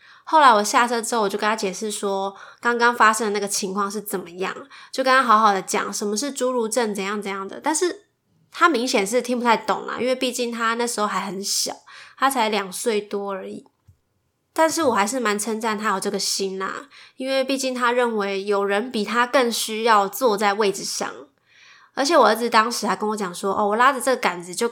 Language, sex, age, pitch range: Chinese, female, 20-39, 200-245 Hz